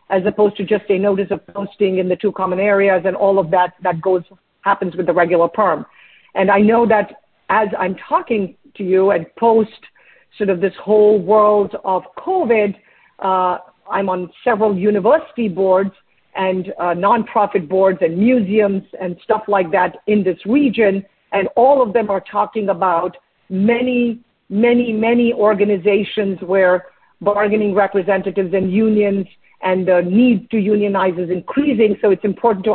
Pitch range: 195-235 Hz